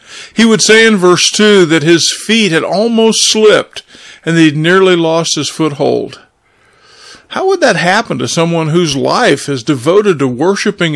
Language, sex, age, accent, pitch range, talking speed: English, male, 50-69, American, 145-190 Hz, 170 wpm